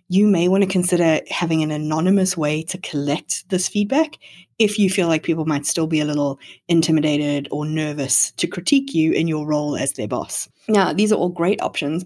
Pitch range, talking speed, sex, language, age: 155-190 Hz, 205 wpm, female, English, 20-39